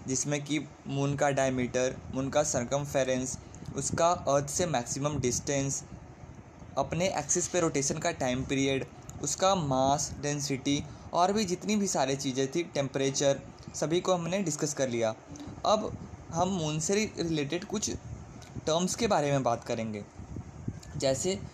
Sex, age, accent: male, 20-39, native